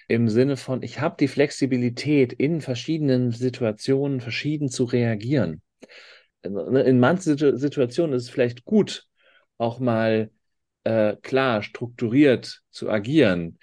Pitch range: 100-130 Hz